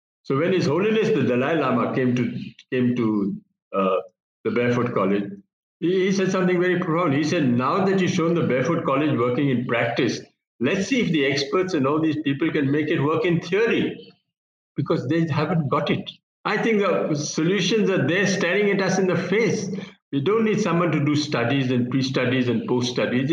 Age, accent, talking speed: 60-79, Indian, 195 wpm